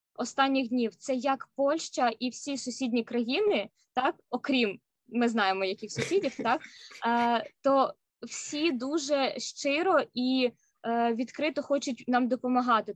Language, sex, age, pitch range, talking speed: Ukrainian, female, 20-39, 235-280 Hz, 125 wpm